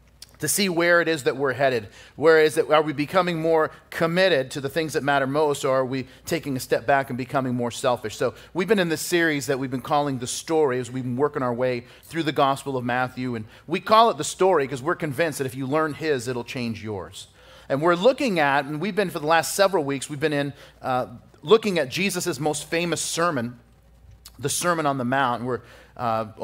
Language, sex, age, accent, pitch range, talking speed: English, male, 40-59, American, 135-175 Hz, 230 wpm